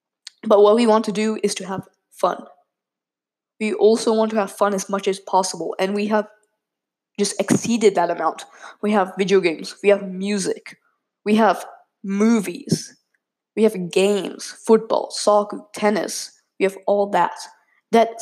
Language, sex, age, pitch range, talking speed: English, female, 10-29, 195-225 Hz, 160 wpm